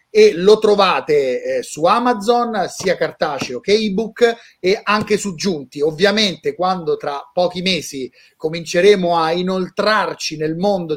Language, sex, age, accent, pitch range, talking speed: Italian, male, 30-49, native, 165-225 Hz, 130 wpm